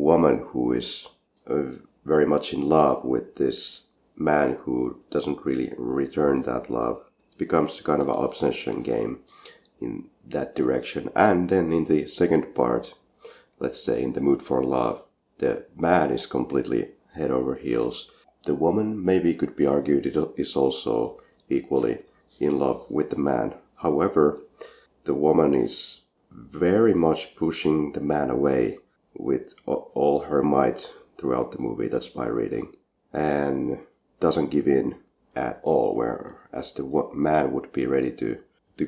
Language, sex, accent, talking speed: English, male, Finnish, 150 wpm